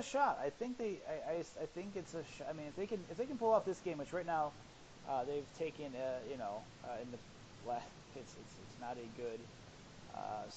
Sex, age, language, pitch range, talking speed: male, 30-49, English, 120-145 Hz, 250 wpm